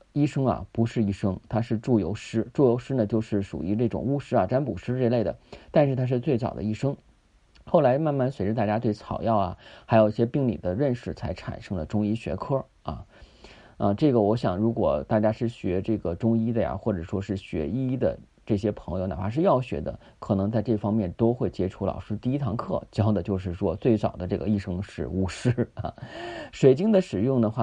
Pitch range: 105-125 Hz